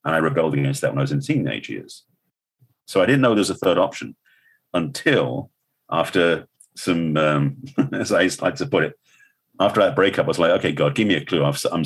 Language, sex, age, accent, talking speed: English, male, 40-59, British, 230 wpm